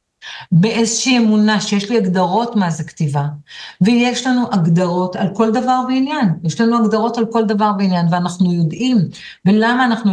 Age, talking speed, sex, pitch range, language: 50-69, 155 wpm, female, 175-235 Hz, Hebrew